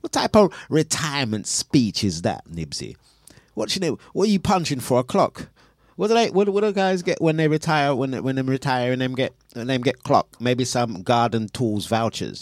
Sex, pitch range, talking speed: male, 110-145 Hz, 210 wpm